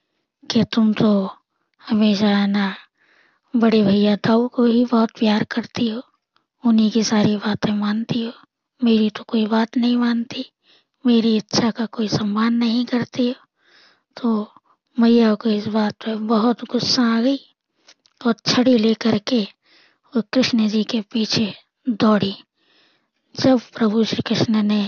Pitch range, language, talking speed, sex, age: 215-240 Hz, Hindi, 145 wpm, female, 20-39